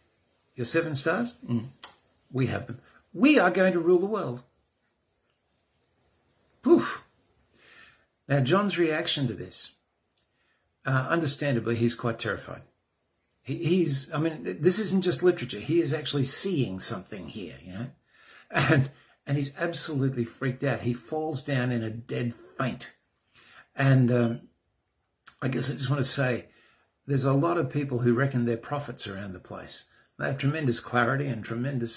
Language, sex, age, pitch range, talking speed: English, male, 50-69, 120-145 Hz, 150 wpm